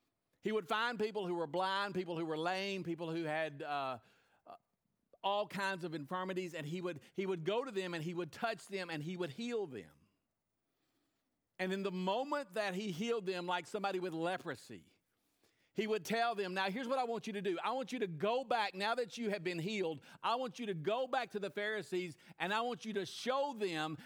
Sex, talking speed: male, 220 wpm